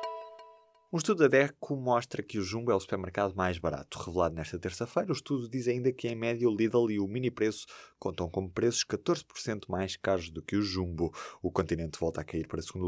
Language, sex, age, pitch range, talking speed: Portuguese, male, 20-39, 95-135 Hz, 215 wpm